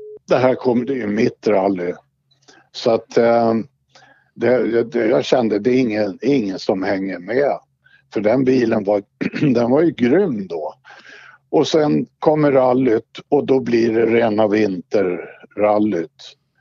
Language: Swedish